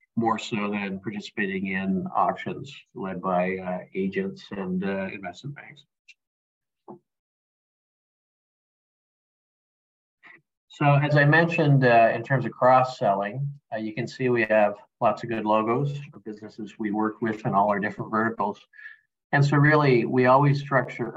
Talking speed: 140 wpm